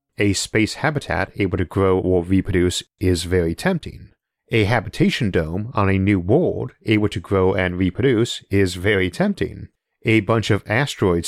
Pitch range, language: 90-115 Hz, English